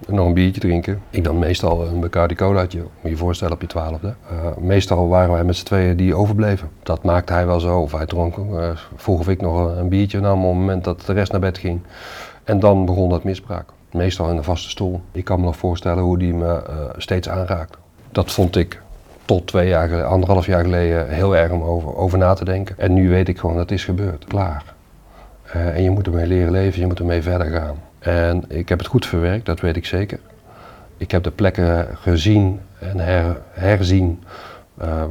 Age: 40-59